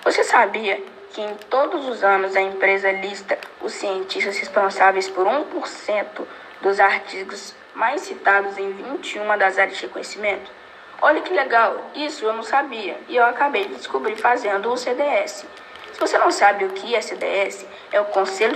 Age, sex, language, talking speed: 10-29, female, Portuguese, 165 wpm